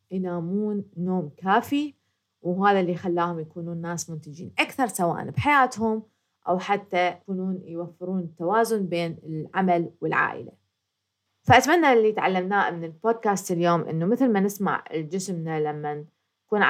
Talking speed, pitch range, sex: 120 wpm, 170-195 Hz, female